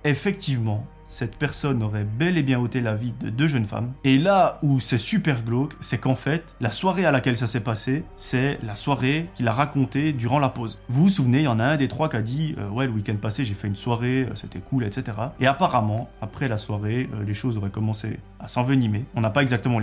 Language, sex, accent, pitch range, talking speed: French, male, French, 110-135 Hz, 245 wpm